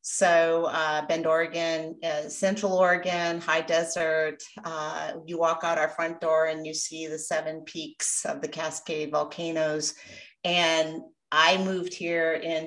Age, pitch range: 40-59, 150-175 Hz